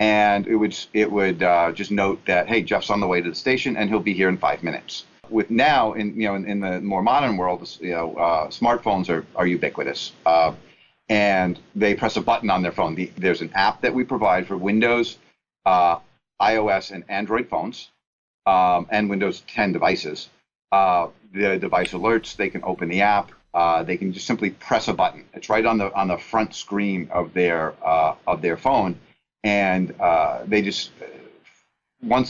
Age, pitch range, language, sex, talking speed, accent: 40-59, 90-110 Hz, English, male, 195 wpm, American